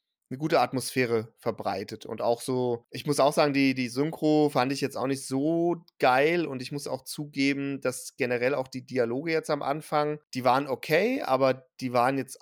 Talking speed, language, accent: 200 wpm, German, German